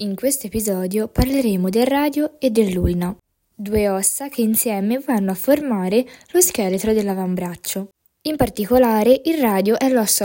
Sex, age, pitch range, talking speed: female, 20-39, 190-260 Hz, 140 wpm